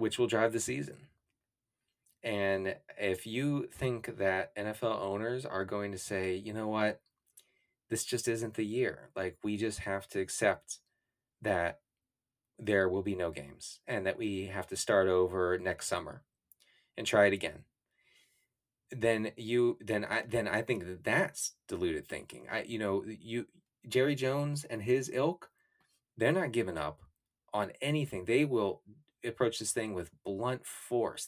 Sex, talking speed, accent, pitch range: male, 160 wpm, American, 100-120 Hz